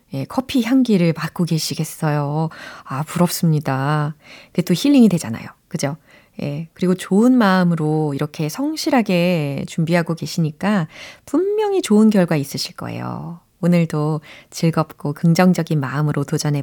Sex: female